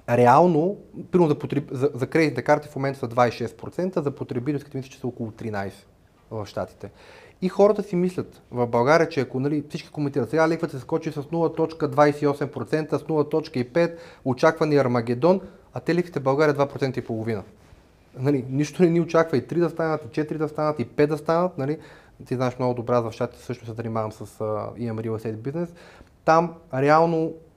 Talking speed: 180 wpm